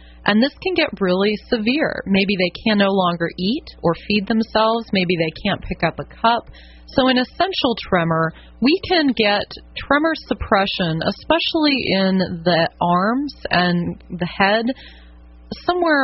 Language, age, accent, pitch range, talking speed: English, 30-49, American, 165-220 Hz, 145 wpm